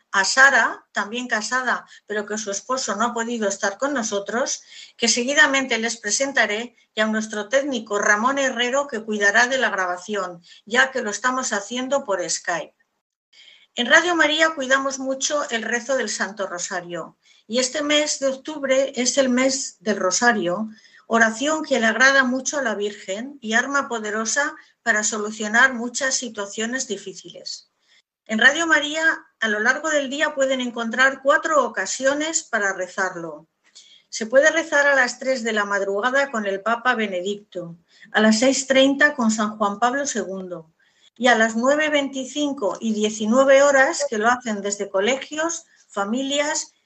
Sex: female